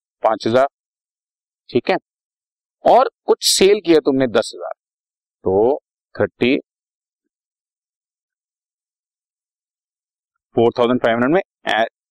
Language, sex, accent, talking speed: Hindi, male, native, 75 wpm